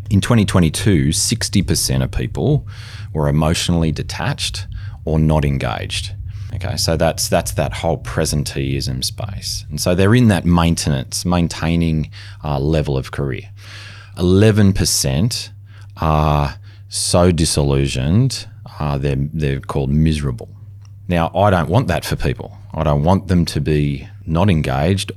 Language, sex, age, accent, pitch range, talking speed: English, male, 30-49, Australian, 80-105 Hz, 130 wpm